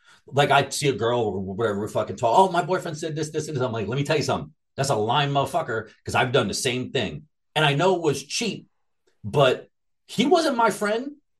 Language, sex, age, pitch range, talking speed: English, male, 30-49, 140-200 Hz, 240 wpm